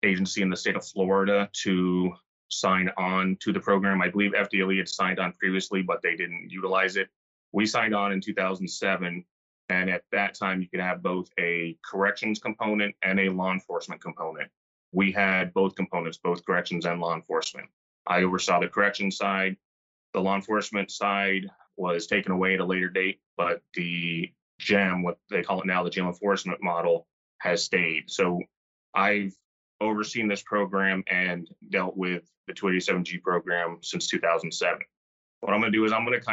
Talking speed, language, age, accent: 170 wpm, English, 30-49, American